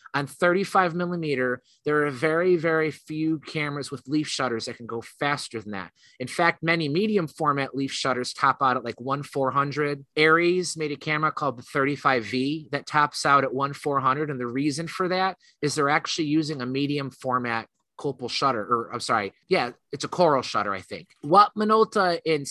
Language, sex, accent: English, male, American